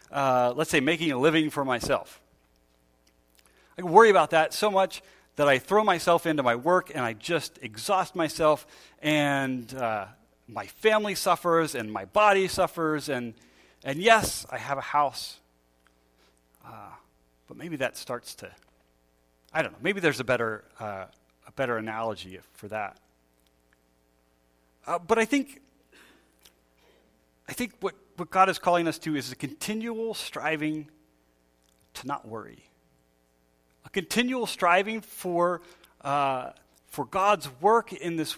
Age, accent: 40-59, American